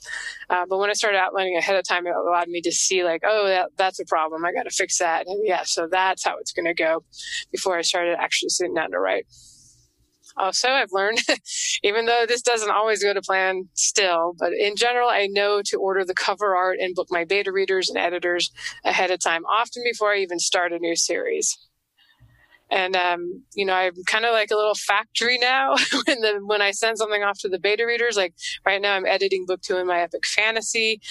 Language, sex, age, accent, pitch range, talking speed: English, female, 20-39, American, 180-225 Hz, 220 wpm